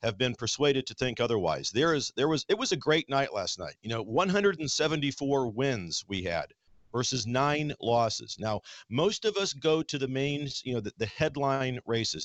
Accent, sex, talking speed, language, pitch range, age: American, male, 195 wpm, English, 115-145 Hz, 50-69